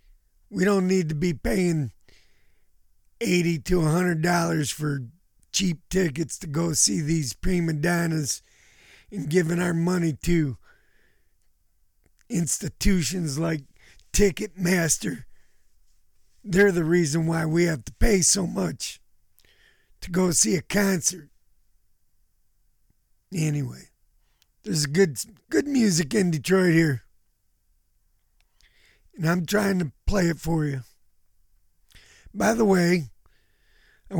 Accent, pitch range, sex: American, 145-185 Hz, male